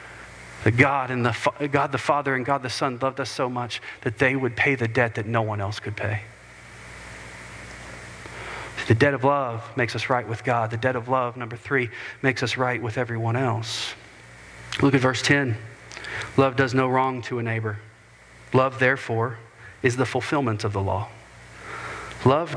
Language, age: English, 40-59